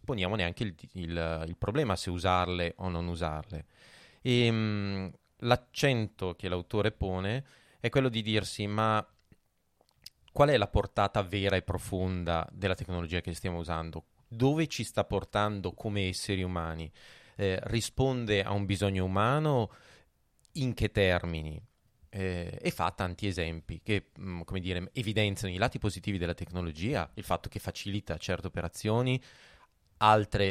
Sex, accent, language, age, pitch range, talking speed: male, native, Italian, 30-49, 90-110 Hz, 140 wpm